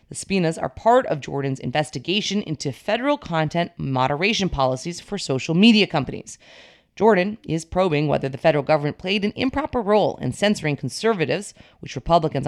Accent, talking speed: American, 155 wpm